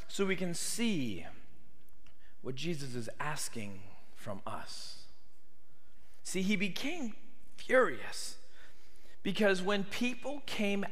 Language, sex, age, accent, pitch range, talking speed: English, male, 40-59, American, 170-230 Hz, 100 wpm